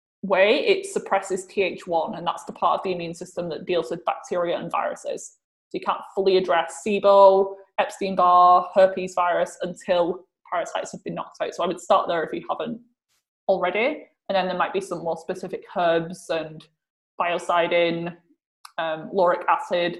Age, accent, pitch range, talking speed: 20-39, British, 175-225 Hz, 170 wpm